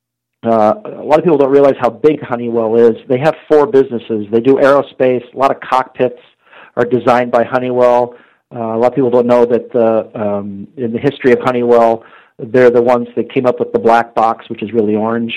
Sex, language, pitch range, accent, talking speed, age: male, English, 110-125 Hz, American, 215 wpm, 40-59